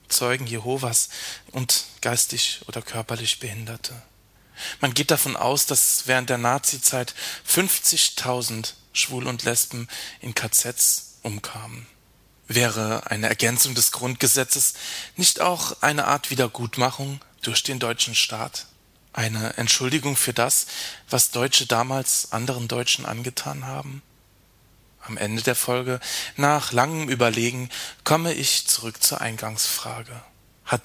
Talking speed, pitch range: 120 wpm, 115-135 Hz